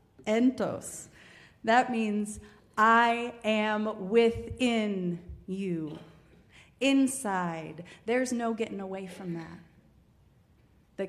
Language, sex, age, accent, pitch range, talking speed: English, female, 30-49, American, 175-230 Hz, 80 wpm